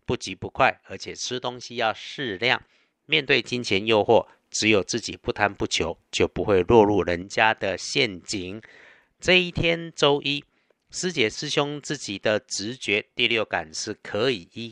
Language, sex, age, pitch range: Chinese, male, 50-69, 100-135 Hz